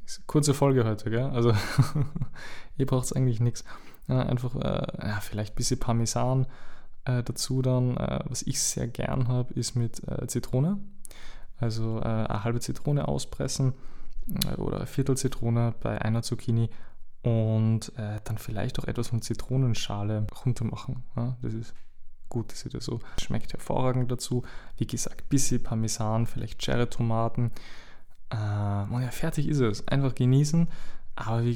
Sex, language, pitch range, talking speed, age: male, German, 115-130 Hz, 155 wpm, 20-39